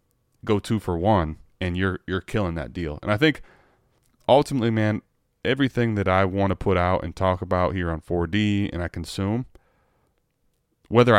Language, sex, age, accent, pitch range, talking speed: English, male, 20-39, American, 85-110 Hz, 170 wpm